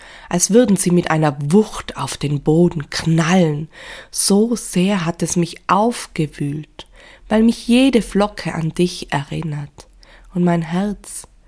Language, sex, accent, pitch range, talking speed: German, female, German, 160-210 Hz, 135 wpm